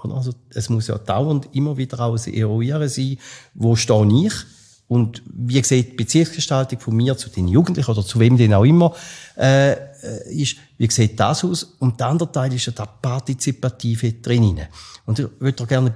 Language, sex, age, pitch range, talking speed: German, male, 50-69, 115-145 Hz, 185 wpm